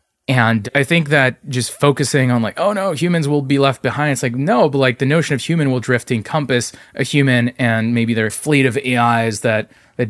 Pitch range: 115-135 Hz